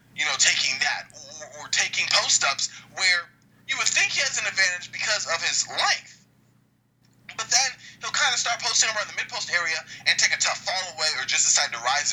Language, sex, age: English, male, 20-39